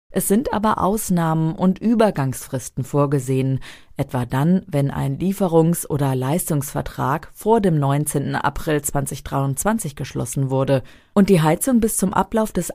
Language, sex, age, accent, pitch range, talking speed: German, female, 40-59, German, 135-185 Hz, 130 wpm